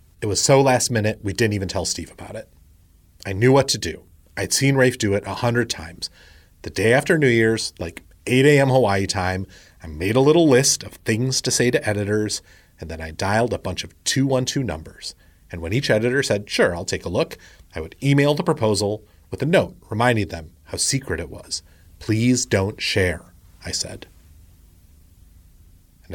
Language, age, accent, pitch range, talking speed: English, 30-49, American, 85-120 Hz, 195 wpm